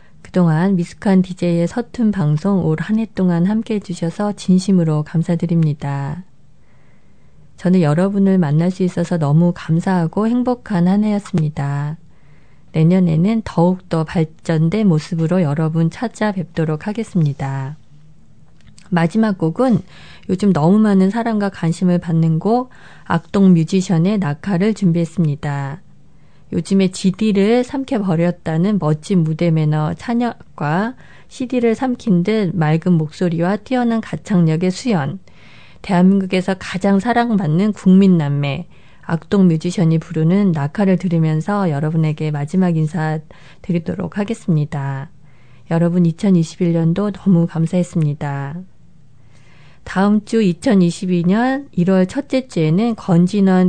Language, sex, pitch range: Korean, female, 160-195 Hz